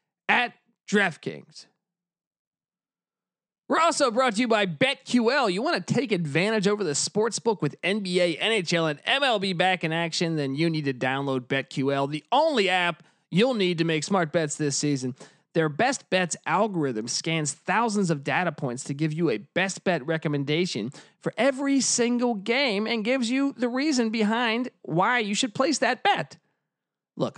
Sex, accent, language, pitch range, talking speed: male, American, English, 155-215 Hz, 165 wpm